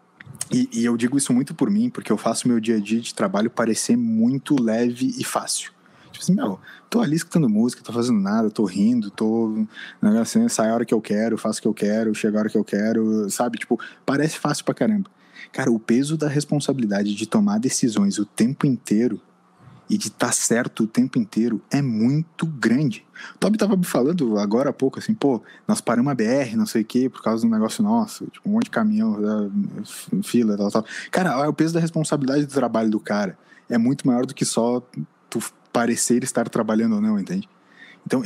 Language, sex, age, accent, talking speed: Portuguese, male, 20-39, Brazilian, 215 wpm